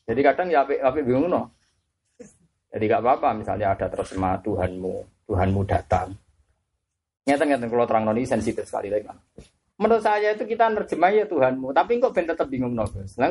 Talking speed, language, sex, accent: 160 wpm, Indonesian, male, native